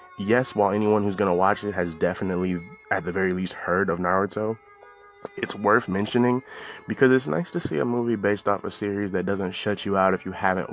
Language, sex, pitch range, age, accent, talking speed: English, male, 95-110 Hz, 20-39, American, 220 wpm